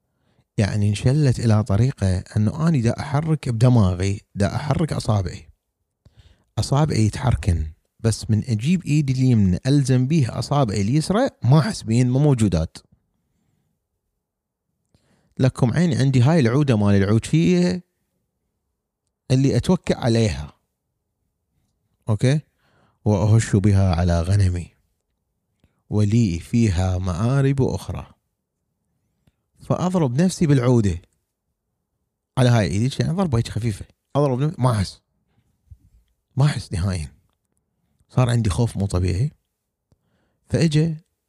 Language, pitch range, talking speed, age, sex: Arabic, 95-130 Hz, 100 wpm, 30-49, male